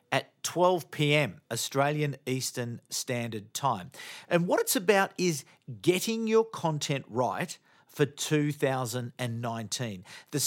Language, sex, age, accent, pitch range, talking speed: English, male, 50-69, Australian, 120-155 Hz, 105 wpm